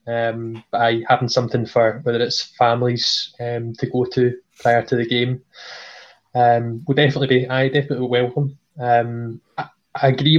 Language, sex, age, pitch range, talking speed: English, male, 20-39, 120-135 Hz, 155 wpm